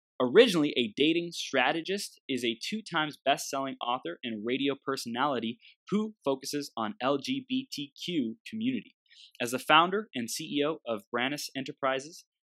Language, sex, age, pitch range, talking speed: English, male, 20-39, 115-170 Hz, 120 wpm